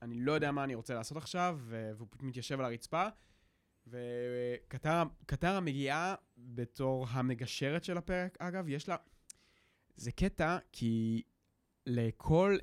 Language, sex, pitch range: Hebrew, male, 120-155 Hz